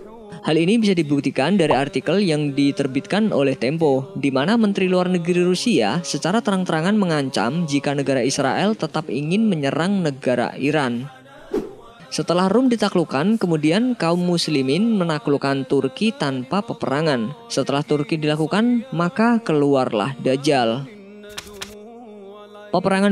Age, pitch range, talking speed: 20-39, 140-200 Hz, 115 wpm